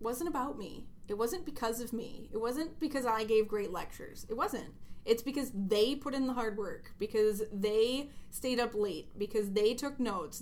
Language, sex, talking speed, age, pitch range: English, female, 195 wpm, 20-39, 210-250 Hz